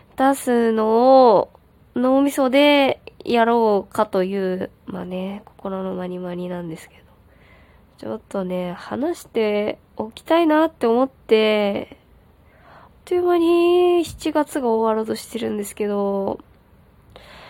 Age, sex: 20-39, female